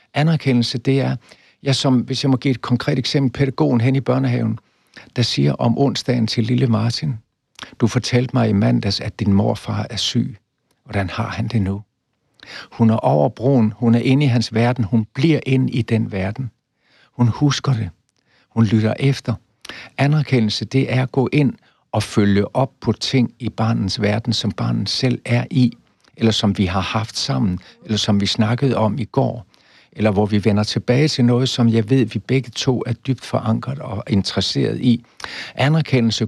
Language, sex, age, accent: Danish, male, 60-79, native